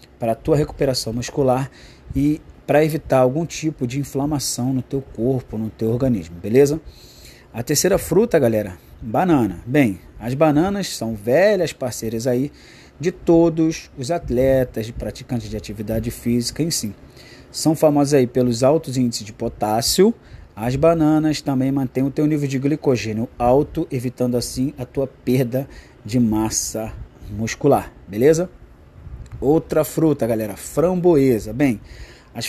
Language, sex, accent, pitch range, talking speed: Portuguese, male, Brazilian, 115-150 Hz, 135 wpm